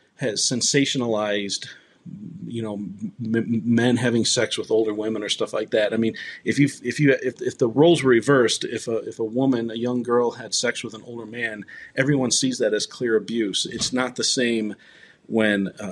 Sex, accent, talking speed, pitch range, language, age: male, American, 195 wpm, 110-125 Hz, English, 40-59